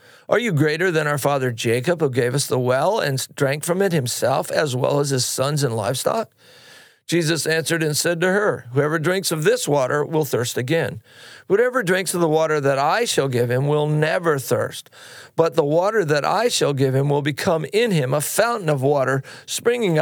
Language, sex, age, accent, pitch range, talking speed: English, male, 50-69, American, 140-175 Hz, 205 wpm